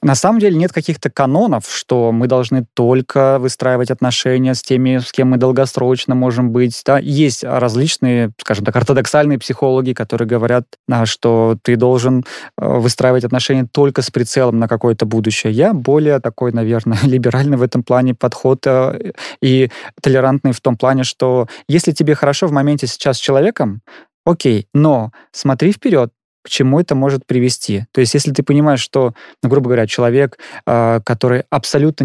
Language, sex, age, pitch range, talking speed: Russian, male, 20-39, 125-145 Hz, 155 wpm